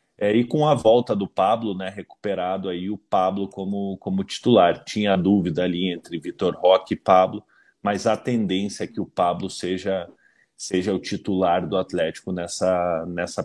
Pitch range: 95-110 Hz